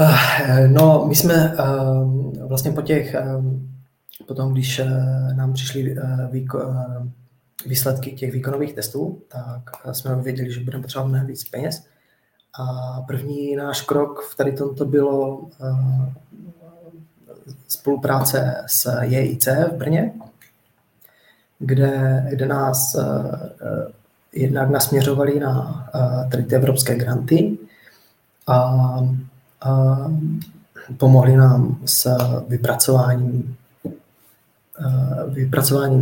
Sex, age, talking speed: male, 20-39, 85 wpm